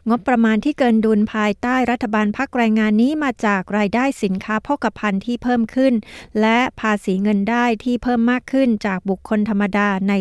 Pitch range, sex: 205-245 Hz, female